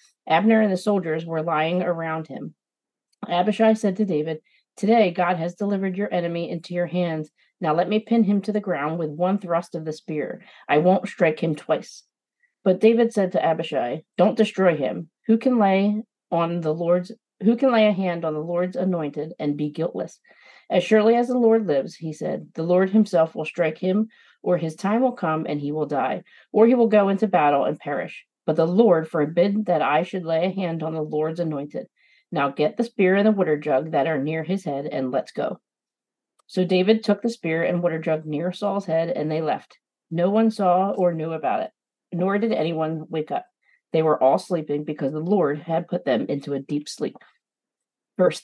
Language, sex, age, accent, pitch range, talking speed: English, female, 40-59, American, 160-210 Hz, 210 wpm